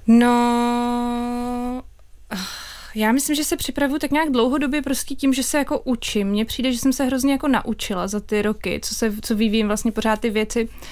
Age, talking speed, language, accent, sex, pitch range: 20-39, 180 wpm, Czech, native, female, 225-255 Hz